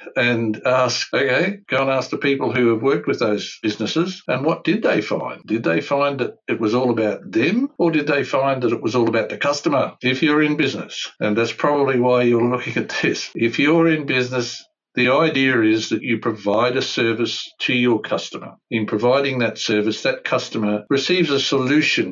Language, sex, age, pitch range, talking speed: English, male, 60-79, 115-145 Hz, 205 wpm